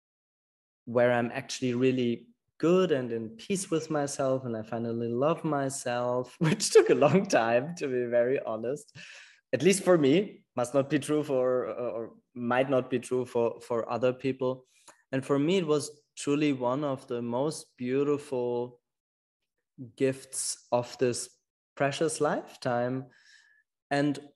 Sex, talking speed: male, 145 wpm